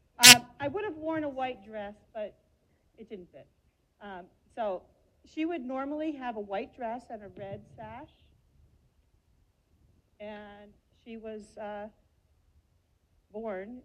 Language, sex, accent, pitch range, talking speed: English, female, American, 170-240 Hz, 125 wpm